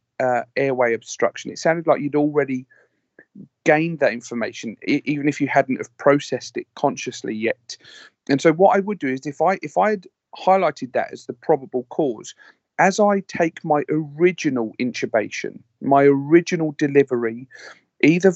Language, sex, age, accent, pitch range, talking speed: English, male, 40-59, British, 130-160 Hz, 155 wpm